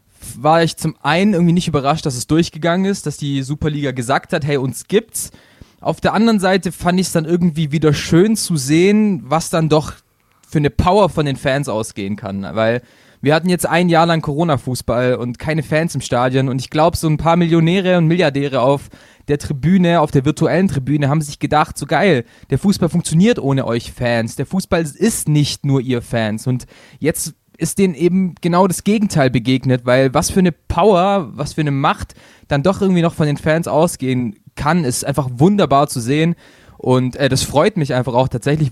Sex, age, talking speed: male, 20-39, 200 wpm